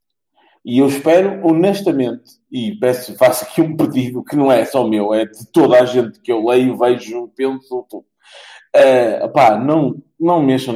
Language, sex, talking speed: Portuguese, male, 175 wpm